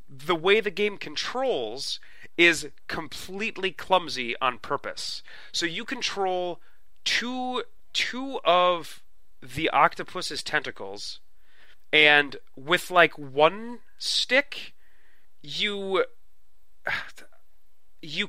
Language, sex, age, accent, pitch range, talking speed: English, male, 30-49, American, 150-205 Hz, 85 wpm